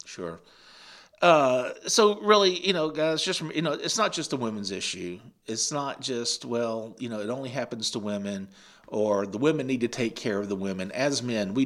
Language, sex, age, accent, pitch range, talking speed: English, male, 50-69, American, 105-145 Hz, 205 wpm